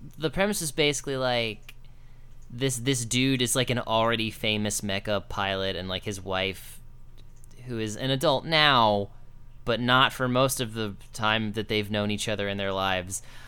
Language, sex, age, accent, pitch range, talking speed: English, male, 20-39, American, 110-135 Hz, 175 wpm